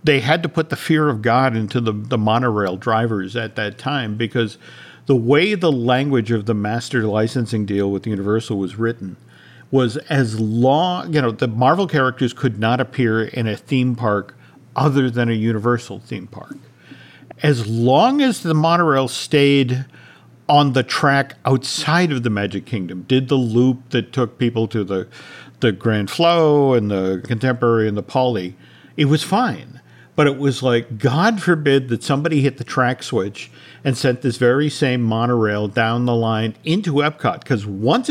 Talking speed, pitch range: 175 wpm, 115-140 Hz